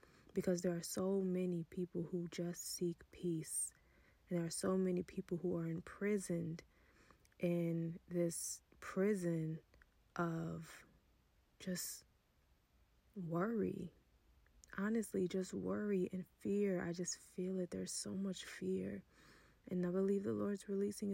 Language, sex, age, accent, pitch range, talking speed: English, female, 20-39, American, 175-195 Hz, 125 wpm